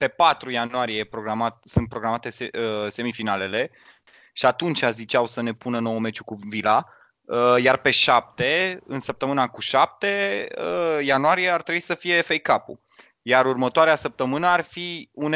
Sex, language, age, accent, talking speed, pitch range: male, Romanian, 20-39, native, 145 wpm, 125-170 Hz